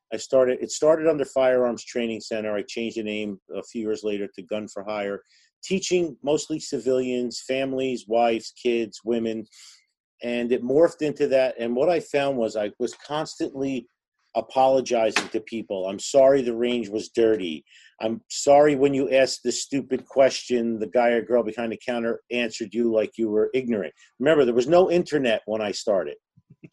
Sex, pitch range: male, 115-135 Hz